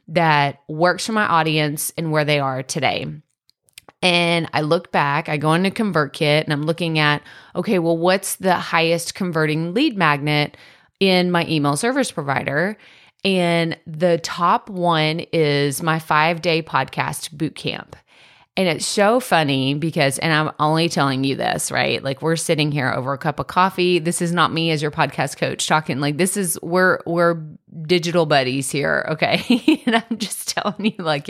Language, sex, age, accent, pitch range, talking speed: English, female, 30-49, American, 155-205 Hz, 170 wpm